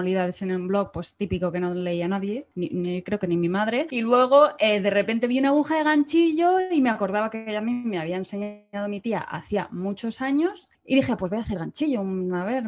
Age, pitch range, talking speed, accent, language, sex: 20-39, 195-270 Hz, 235 wpm, Spanish, Spanish, female